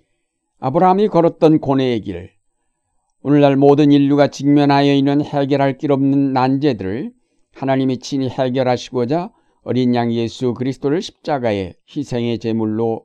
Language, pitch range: Korean, 120-145 Hz